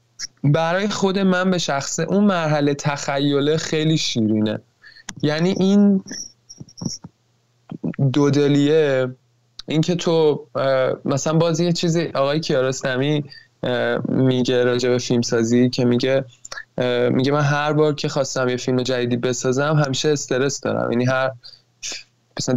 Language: Persian